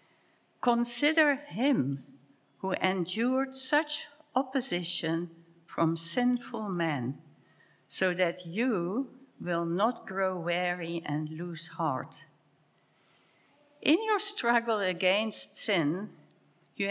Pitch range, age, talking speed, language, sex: 170-235 Hz, 60-79, 90 wpm, English, female